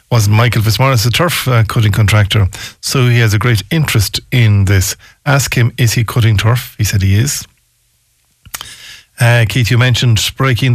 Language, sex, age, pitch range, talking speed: English, male, 50-69, 105-125 Hz, 175 wpm